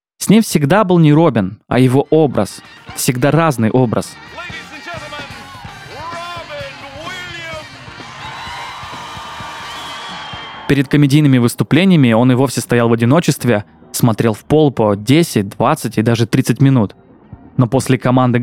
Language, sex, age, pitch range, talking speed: Russian, male, 20-39, 120-165 Hz, 110 wpm